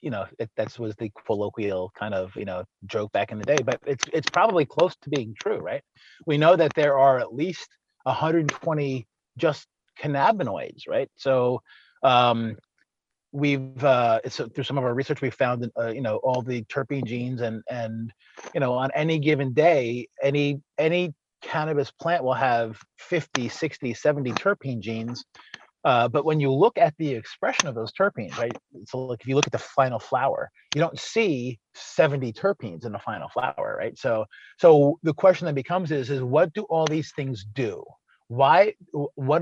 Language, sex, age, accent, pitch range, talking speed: English, male, 30-49, American, 120-155 Hz, 185 wpm